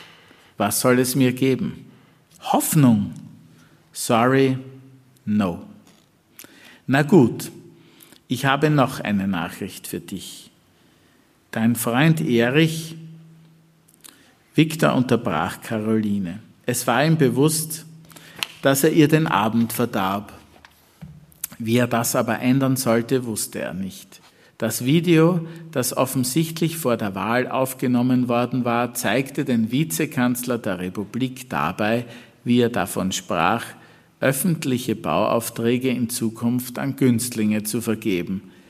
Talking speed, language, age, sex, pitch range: 110 wpm, German, 50-69, male, 115-140 Hz